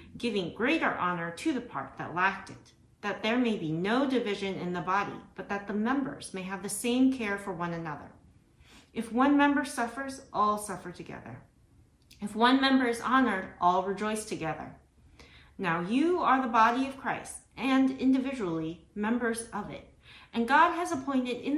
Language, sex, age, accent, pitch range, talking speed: English, female, 30-49, American, 190-260 Hz, 170 wpm